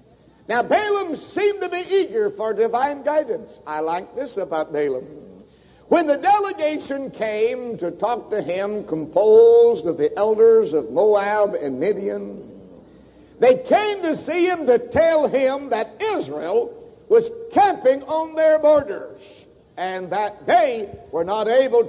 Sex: male